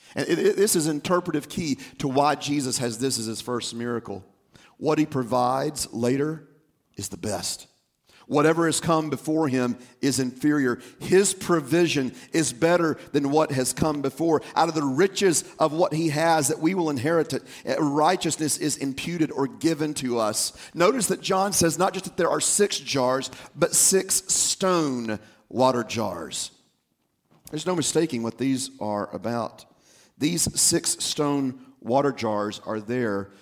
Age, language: 40-59, English